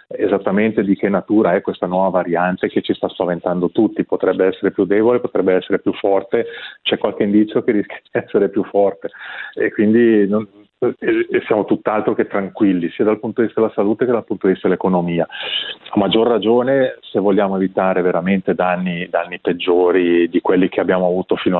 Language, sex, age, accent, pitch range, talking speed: Italian, male, 30-49, native, 95-105 Hz, 180 wpm